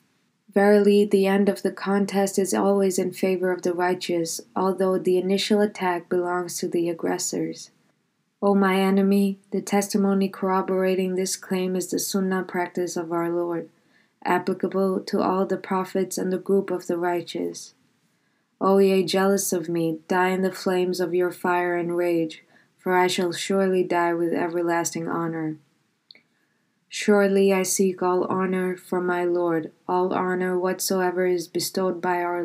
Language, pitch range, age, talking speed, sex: English, 180-195 Hz, 20-39, 155 wpm, female